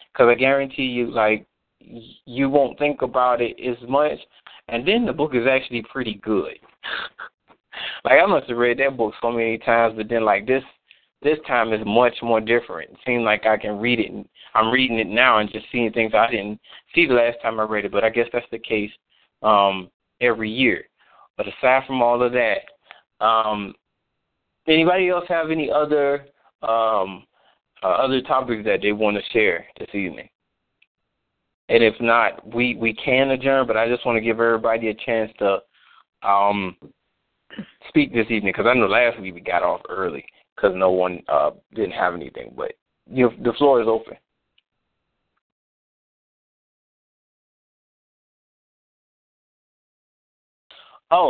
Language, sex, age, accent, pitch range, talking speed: English, male, 20-39, American, 110-130 Hz, 165 wpm